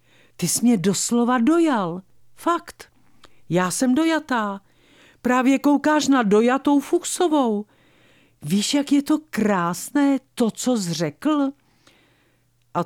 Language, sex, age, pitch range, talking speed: Czech, female, 50-69, 175-260 Hz, 110 wpm